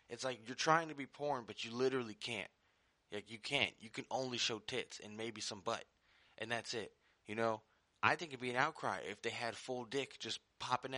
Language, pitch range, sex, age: English, 115-140 Hz, male, 20-39